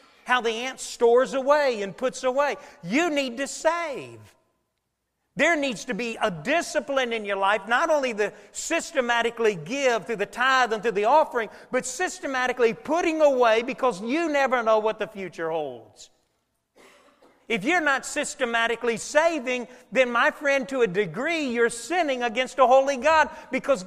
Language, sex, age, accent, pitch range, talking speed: English, male, 40-59, American, 200-275 Hz, 160 wpm